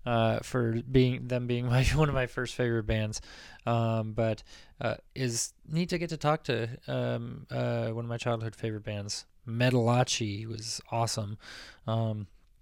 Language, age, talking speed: English, 20-39, 160 wpm